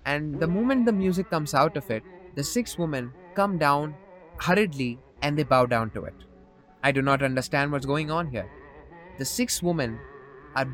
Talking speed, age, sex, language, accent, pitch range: 185 wpm, 20-39, male, English, Indian, 135-175 Hz